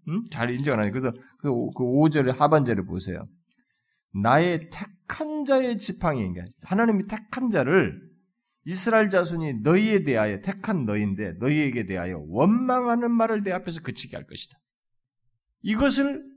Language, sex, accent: Korean, male, native